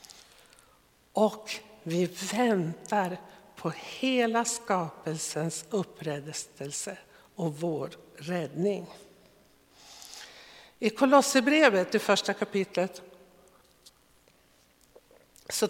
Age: 60-79